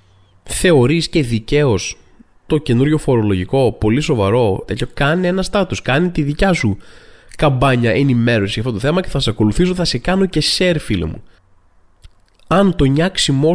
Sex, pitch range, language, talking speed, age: male, 105-145 Hz, Greek, 160 wpm, 20-39